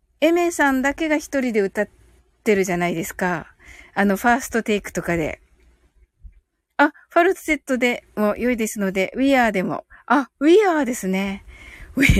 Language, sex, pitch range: Japanese, female, 210-315 Hz